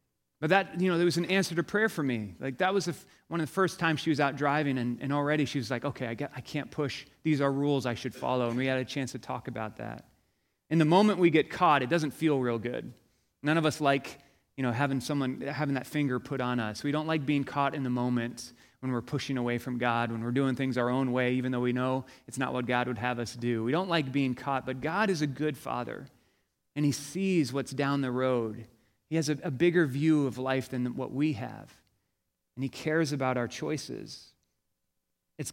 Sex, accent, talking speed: male, American, 245 wpm